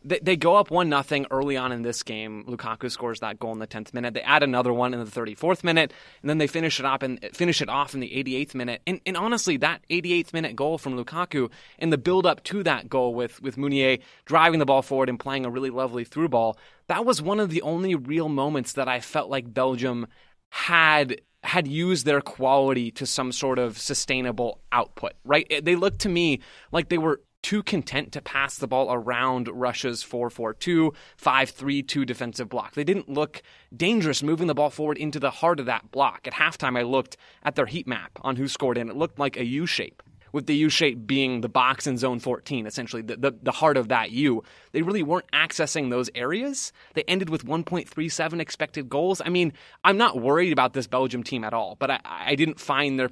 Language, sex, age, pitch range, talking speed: English, male, 20-39, 125-160 Hz, 215 wpm